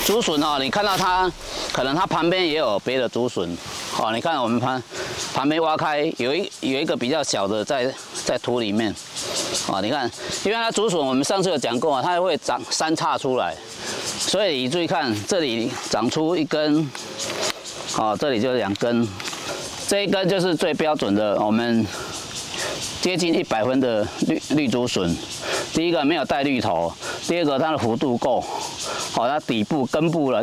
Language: Chinese